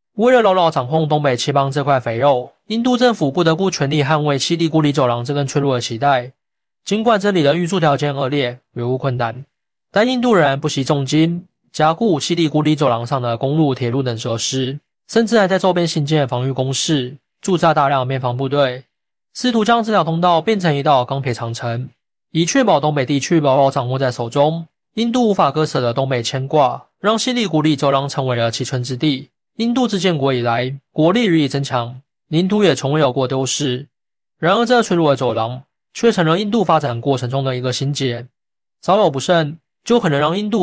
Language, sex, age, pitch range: Chinese, male, 20-39, 130-170 Hz